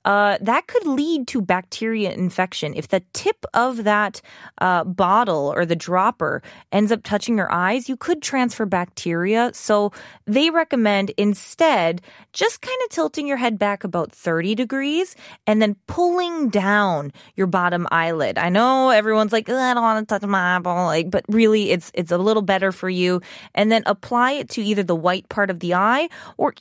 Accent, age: American, 20-39